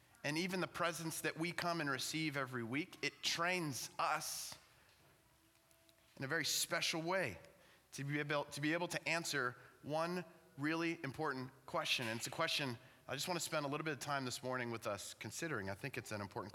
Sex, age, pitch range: male, 30-49, 125-165 Hz